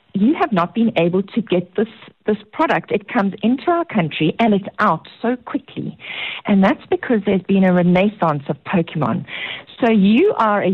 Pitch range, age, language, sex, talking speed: 165-220 Hz, 50-69, English, female, 185 wpm